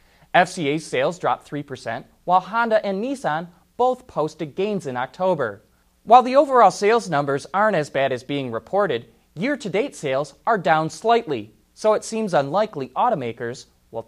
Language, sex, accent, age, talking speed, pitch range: English, male, American, 20-39, 150 wpm, 135-205 Hz